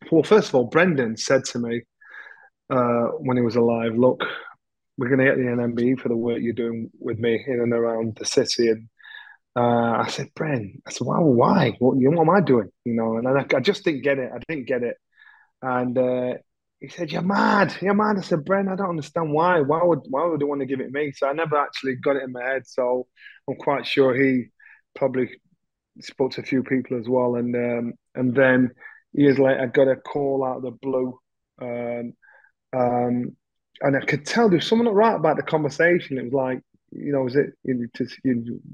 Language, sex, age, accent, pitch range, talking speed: English, male, 20-39, British, 120-150 Hz, 225 wpm